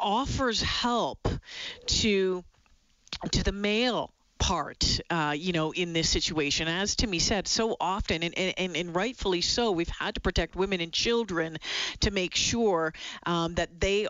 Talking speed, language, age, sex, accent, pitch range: 155 wpm, English, 40-59, female, American, 170-220 Hz